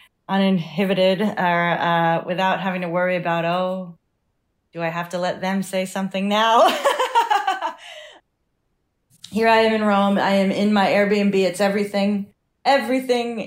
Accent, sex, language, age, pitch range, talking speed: American, female, English, 20-39, 170-195 Hz, 140 wpm